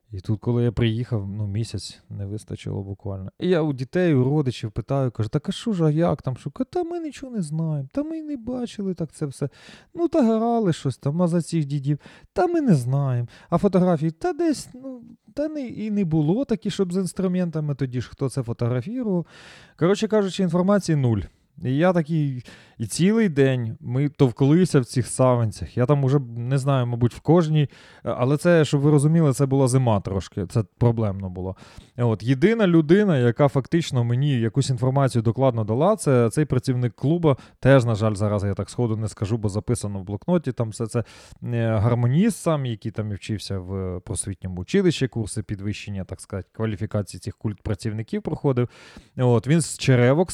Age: 20-39